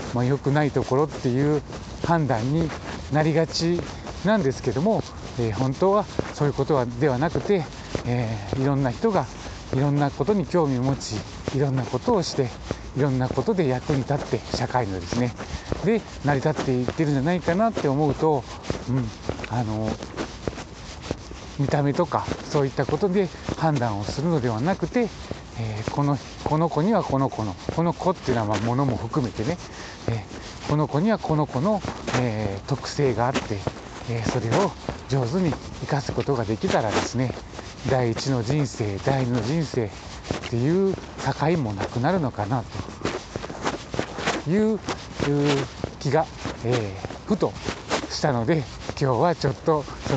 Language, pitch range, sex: Japanese, 115-150 Hz, male